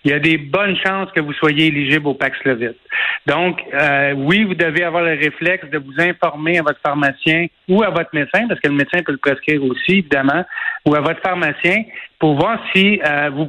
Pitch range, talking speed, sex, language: 155-195 Hz, 220 wpm, male, French